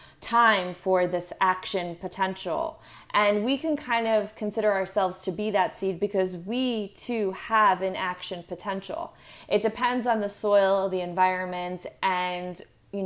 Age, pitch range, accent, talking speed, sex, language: 20-39, 185-210 Hz, American, 145 wpm, female, English